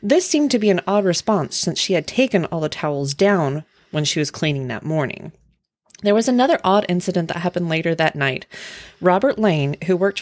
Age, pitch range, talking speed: 30-49, 160-205 Hz, 205 wpm